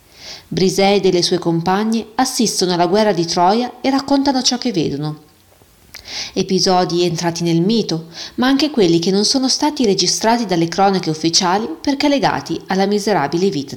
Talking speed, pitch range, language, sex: 155 wpm, 160-215 Hz, Italian, female